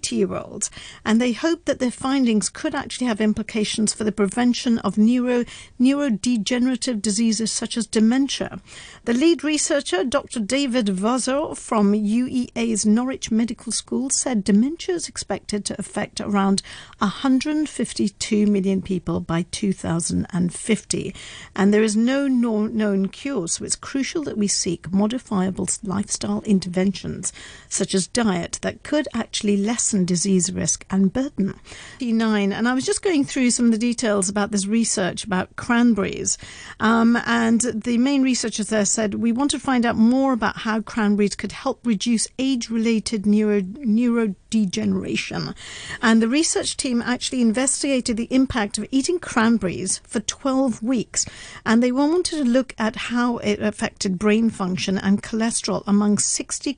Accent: British